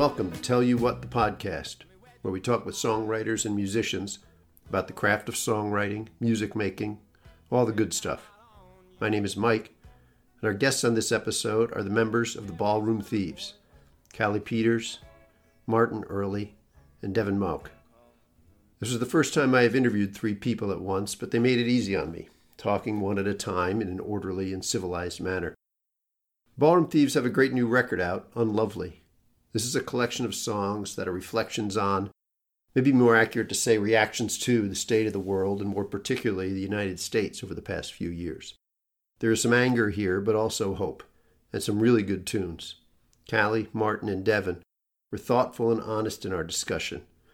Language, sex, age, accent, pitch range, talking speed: English, male, 50-69, American, 95-115 Hz, 185 wpm